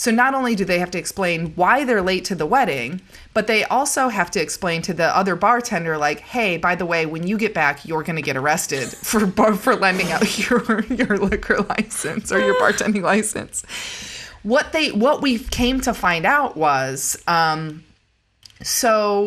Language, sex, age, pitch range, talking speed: English, female, 30-49, 160-225 Hz, 195 wpm